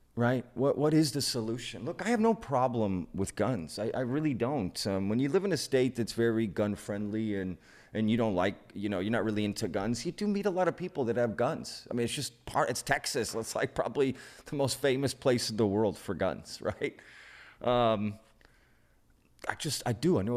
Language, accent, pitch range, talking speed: English, American, 105-135 Hz, 225 wpm